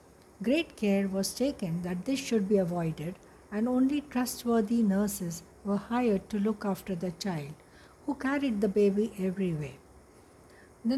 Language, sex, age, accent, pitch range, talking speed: English, female, 60-79, Indian, 195-245 Hz, 140 wpm